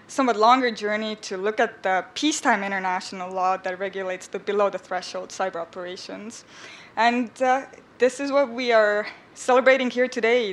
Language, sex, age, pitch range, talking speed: English, female, 20-39, 195-235 Hz, 160 wpm